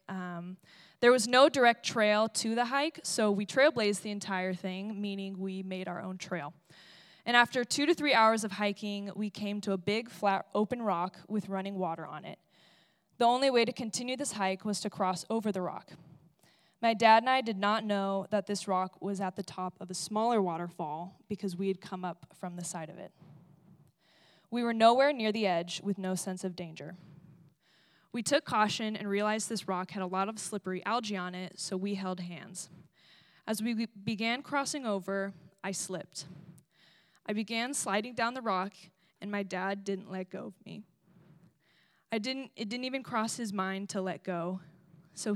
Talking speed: 195 wpm